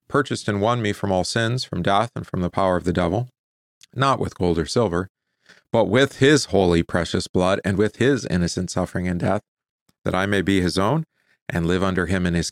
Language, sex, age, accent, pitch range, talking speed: English, male, 40-59, American, 90-115 Hz, 220 wpm